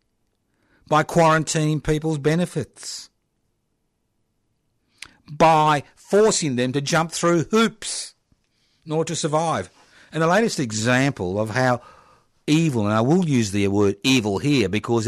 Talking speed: 120 wpm